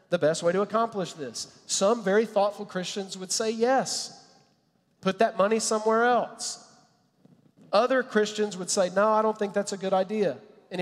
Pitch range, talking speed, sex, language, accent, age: 170-215 Hz, 170 wpm, male, English, American, 40-59